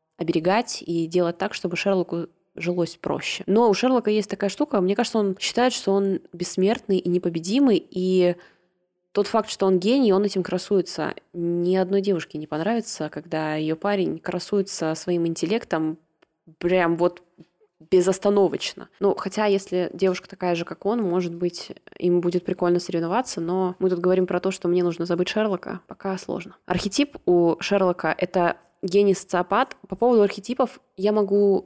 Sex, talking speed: female, 155 wpm